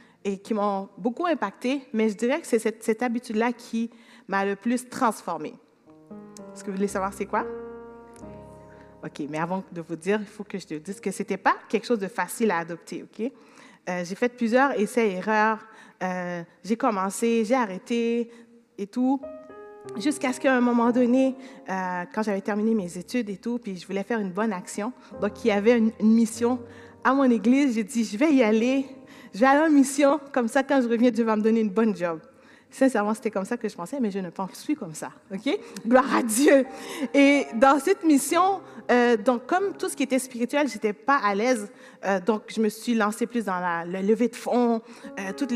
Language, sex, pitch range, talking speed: French, female, 205-255 Hz, 220 wpm